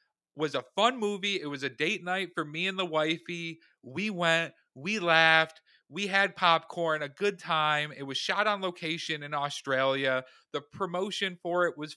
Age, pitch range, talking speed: 30-49, 135-175 Hz, 180 wpm